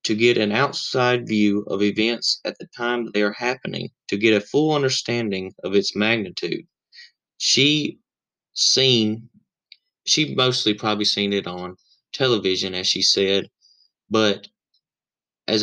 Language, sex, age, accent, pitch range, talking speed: English, male, 20-39, American, 105-125 Hz, 140 wpm